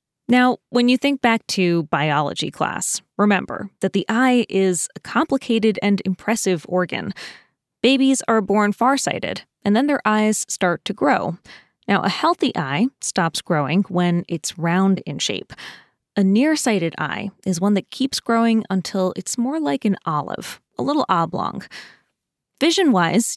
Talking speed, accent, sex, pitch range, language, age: 150 wpm, American, female, 180-240 Hz, English, 20-39